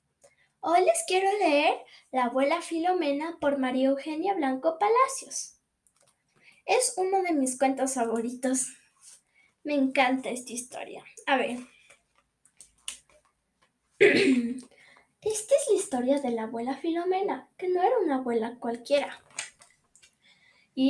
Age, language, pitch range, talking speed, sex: 10-29, Spanish, 265-370 Hz, 110 wpm, female